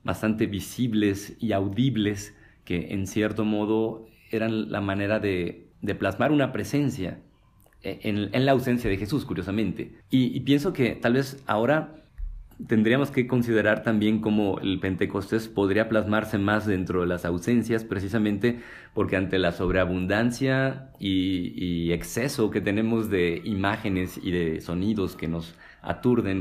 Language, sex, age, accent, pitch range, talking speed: Spanish, male, 40-59, Mexican, 95-115 Hz, 140 wpm